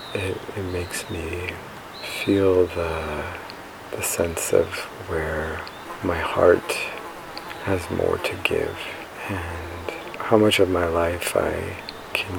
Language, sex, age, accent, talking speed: English, male, 40-59, American, 115 wpm